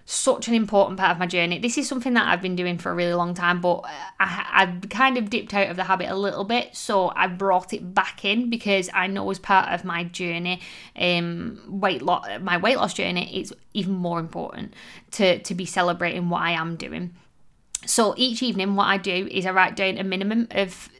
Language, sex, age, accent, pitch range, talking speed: English, female, 20-39, British, 180-220 Hz, 215 wpm